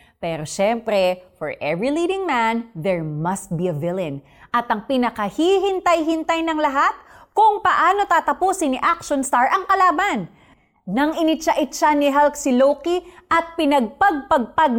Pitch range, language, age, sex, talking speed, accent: 195-315 Hz, Filipino, 30-49, female, 130 wpm, native